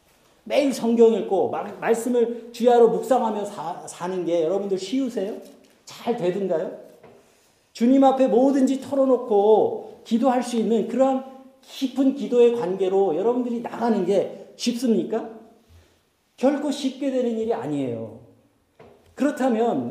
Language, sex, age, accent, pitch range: Korean, male, 40-59, native, 185-245 Hz